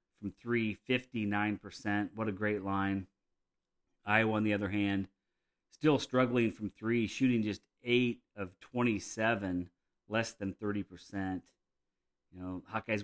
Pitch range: 95-120 Hz